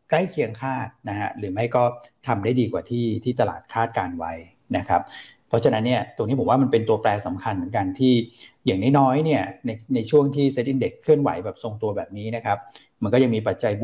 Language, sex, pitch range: Thai, male, 105-130 Hz